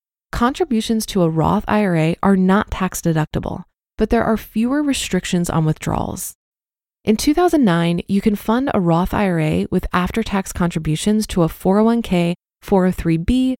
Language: English